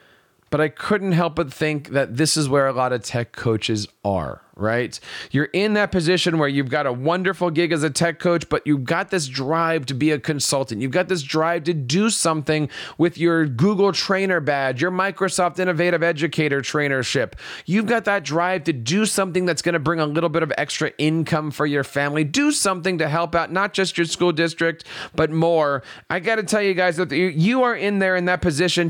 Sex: male